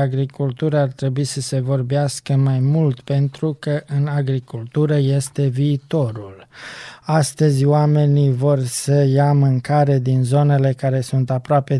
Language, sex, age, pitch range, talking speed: Romanian, male, 20-39, 130-145 Hz, 125 wpm